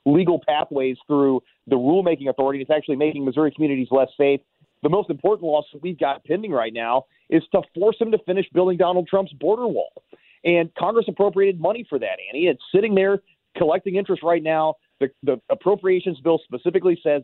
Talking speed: 190 wpm